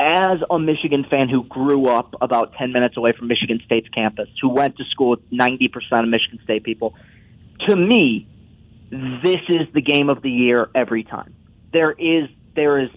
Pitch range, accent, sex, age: 120-155 Hz, American, male, 30-49